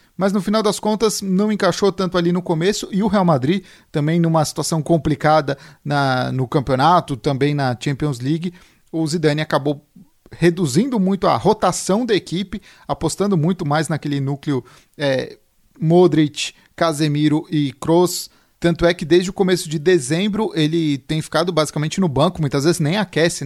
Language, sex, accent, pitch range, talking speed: Portuguese, male, Brazilian, 150-180 Hz, 160 wpm